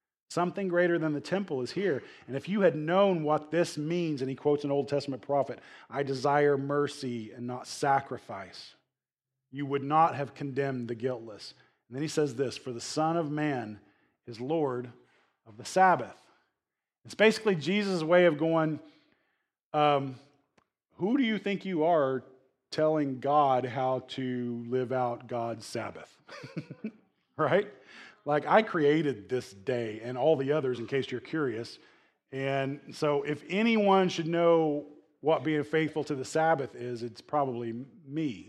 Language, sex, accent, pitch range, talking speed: English, male, American, 130-165 Hz, 160 wpm